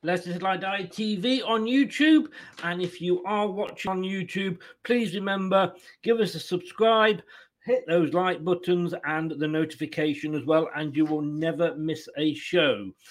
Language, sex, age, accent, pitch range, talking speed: English, male, 40-59, British, 155-200 Hz, 160 wpm